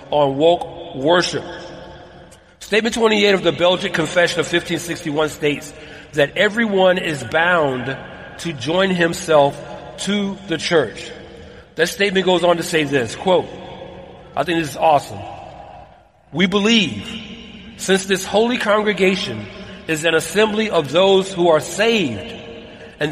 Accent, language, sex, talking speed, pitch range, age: American, English, male, 130 wpm, 165-205 Hz, 40-59